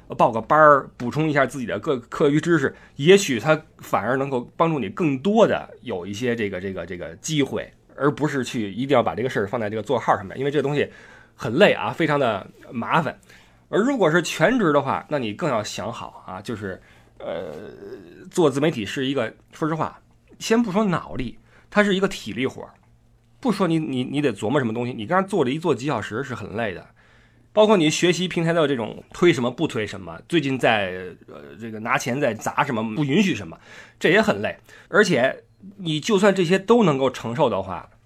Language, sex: Chinese, male